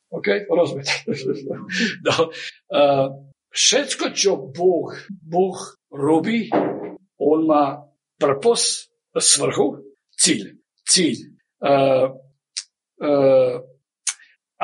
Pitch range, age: 145-235 Hz, 60-79